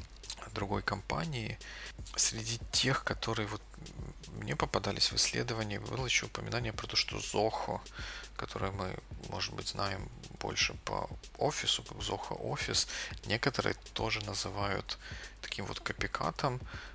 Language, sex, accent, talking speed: Russian, male, native, 115 wpm